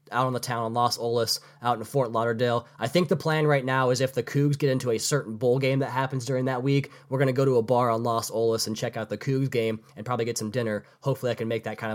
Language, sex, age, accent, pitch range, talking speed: English, male, 20-39, American, 125-145 Hz, 295 wpm